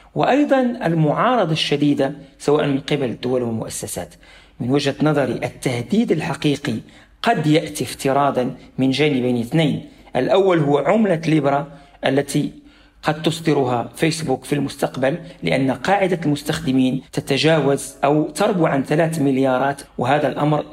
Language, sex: Arabic, male